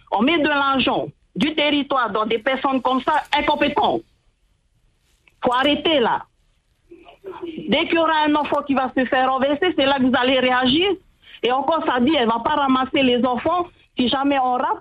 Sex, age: female, 40-59